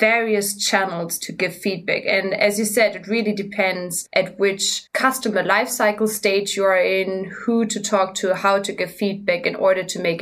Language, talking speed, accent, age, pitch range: English, 190 wpm, German, 20-39, 185-225 Hz